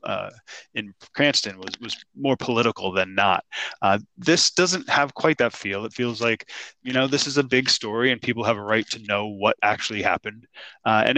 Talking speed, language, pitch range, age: 205 wpm, English, 105-130 Hz, 20-39